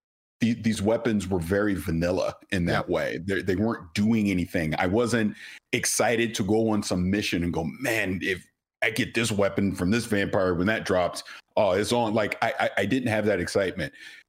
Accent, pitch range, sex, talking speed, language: American, 85-105 Hz, male, 195 wpm, English